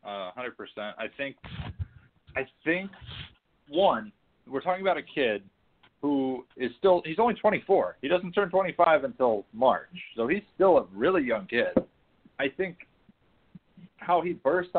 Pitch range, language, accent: 115-155 Hz, English, American